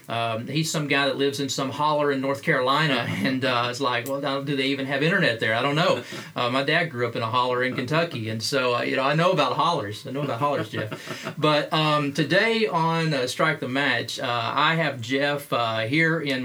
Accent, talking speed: American, 235 wpm